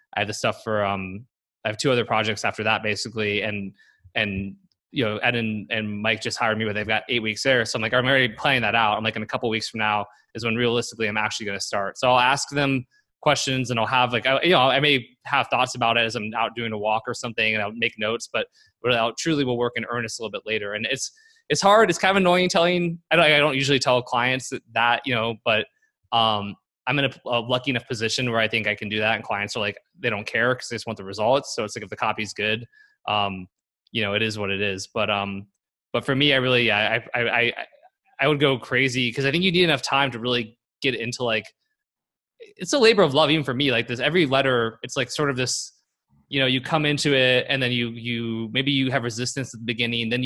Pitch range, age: 110-135 Hz, 20-39